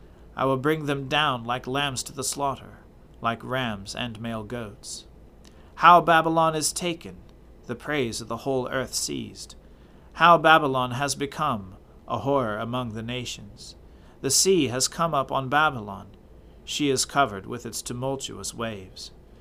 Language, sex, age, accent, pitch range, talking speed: English, male, 40-59, American, 105-140 Hz, 150 wpm